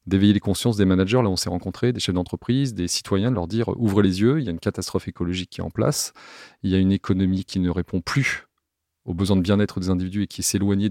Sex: male